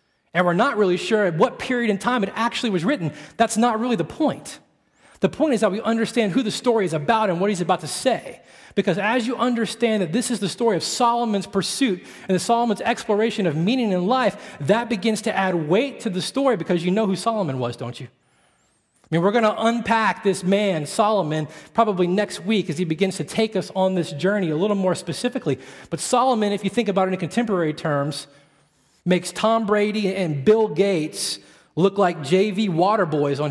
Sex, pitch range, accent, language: male, 180-235 Hz, American, English